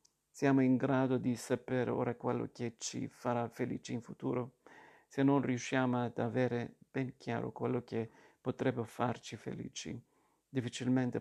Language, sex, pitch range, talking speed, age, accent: Italian, male, 120-130 Hz, 140 wpm, 50-69, native